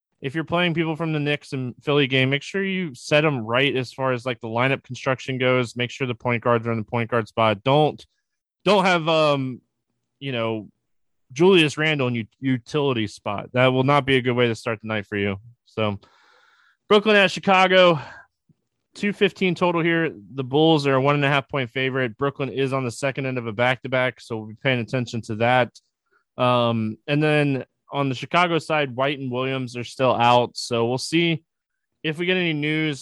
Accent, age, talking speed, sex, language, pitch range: American, 20-39, 205 wpm, male, English, 120-145 Hz